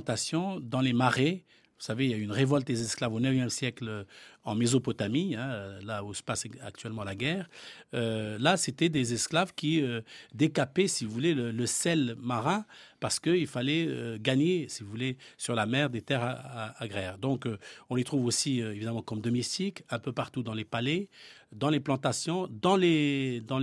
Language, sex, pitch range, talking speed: French, male, 115-155 Hz, 180 wpm